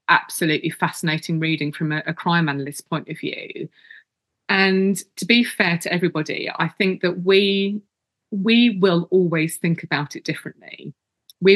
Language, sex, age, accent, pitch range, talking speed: English, female, 30-49, British, 155-190 Hz, 150 wpm